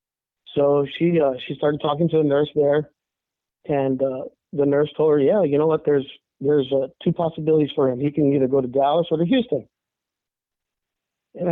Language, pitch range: English, 140-165 Hz